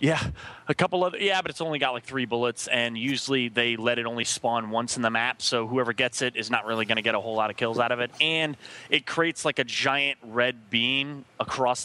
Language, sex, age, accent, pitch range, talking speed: English, male, 20-39, American, 115-130 Hz, 255 wpm